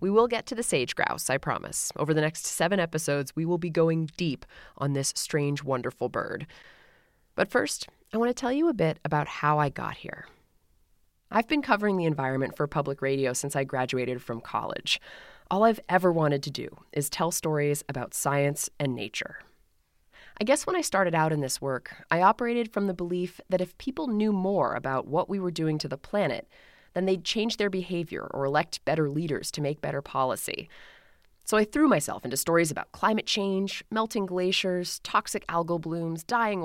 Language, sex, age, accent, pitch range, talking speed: English, female, 20-39, American, 145-200 Hz, 195 wpm